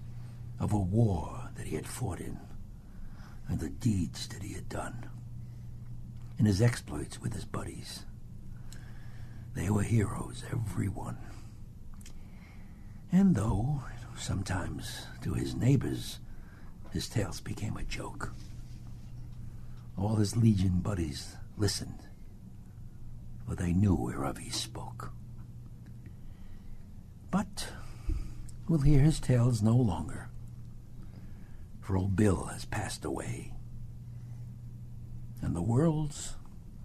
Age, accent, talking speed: 60-79, American, 105 wpm